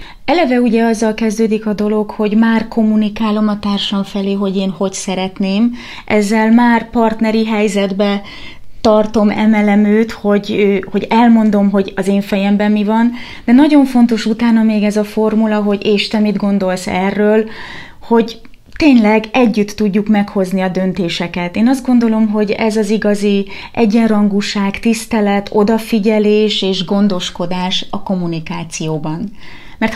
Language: Hungarian